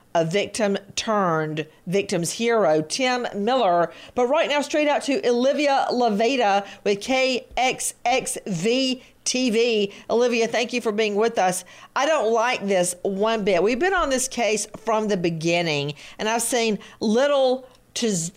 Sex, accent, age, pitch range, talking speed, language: female, American, 40-59, 195-255 Hz, 145 wpm, English